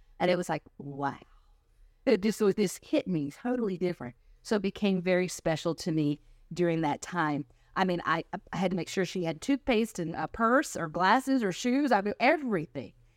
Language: English